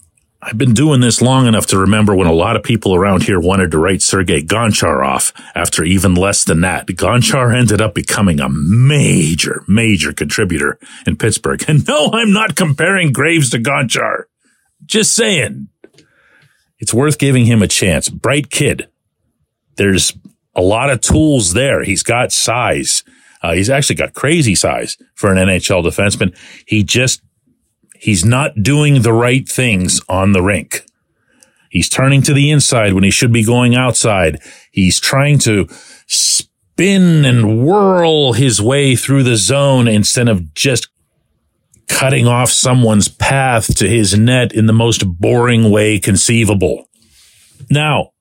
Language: English